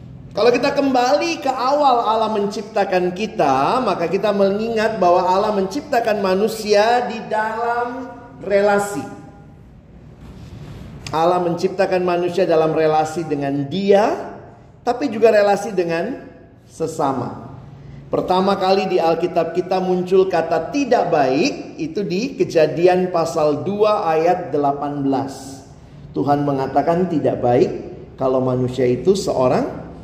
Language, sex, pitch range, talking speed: Indonesian, male, 150-215 Hz, 110 wpm